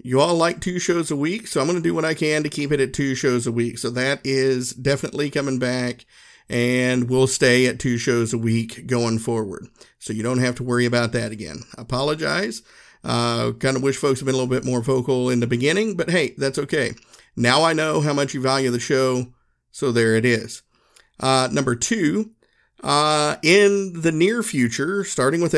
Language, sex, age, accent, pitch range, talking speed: English, male, 50-69, American, 125-150 Hz, 215 wpm